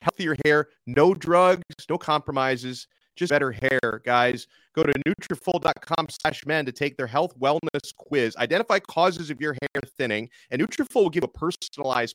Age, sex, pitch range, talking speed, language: 30-49, male, 125-165 Hz, 160 wpm, English